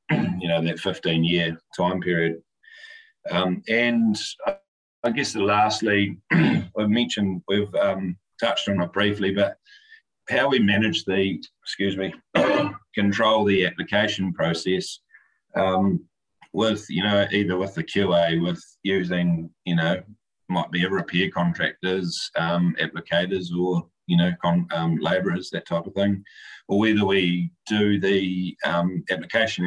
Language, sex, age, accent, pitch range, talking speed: English, male, 30-49, Australian, 90-105 Hz, 140 wpm